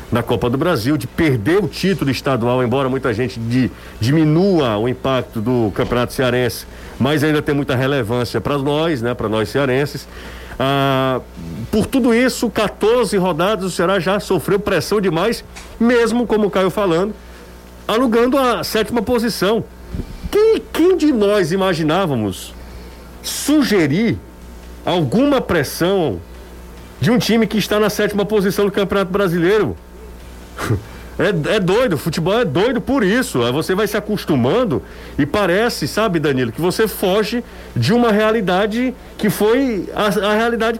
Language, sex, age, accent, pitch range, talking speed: Portuguese, male, 50-69, Brazilian, 135-225 Hz, 145 wpm